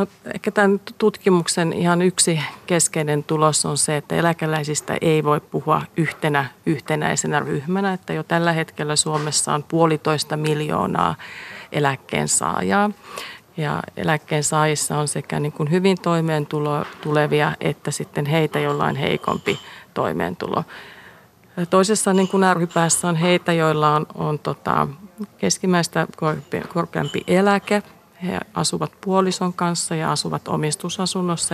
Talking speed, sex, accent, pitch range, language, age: 120 wpm, female, native, 150-180 Hz, Finnish, 40-59